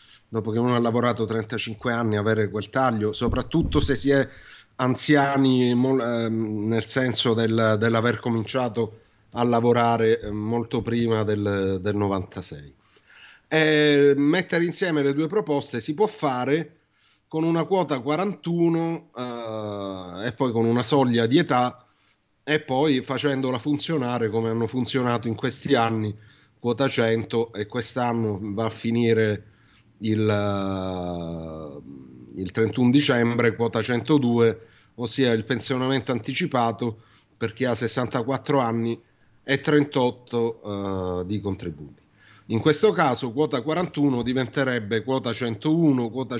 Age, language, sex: 30-49, Italian, male